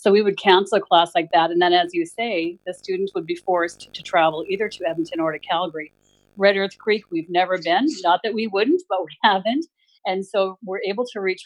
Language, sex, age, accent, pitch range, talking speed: English, female, 40-59, American, 175-210 Hz, 235 wpm